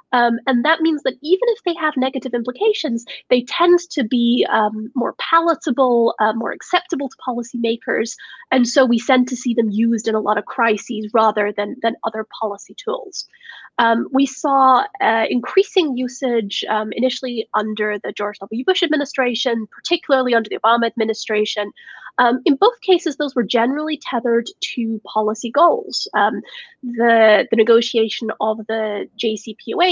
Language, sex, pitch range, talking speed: English, female, 225-290 Hz, 160 wpm